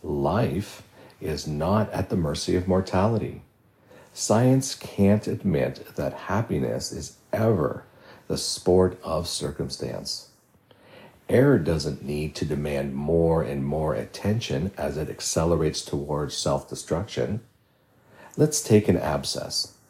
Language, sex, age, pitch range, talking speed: English, male, 50-69, 80-110 Hz, 110 wpm